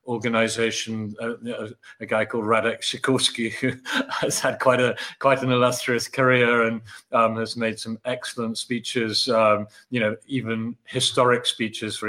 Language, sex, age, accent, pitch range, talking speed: English, male, 30-49, British, 110-125 Hz, 150 wpm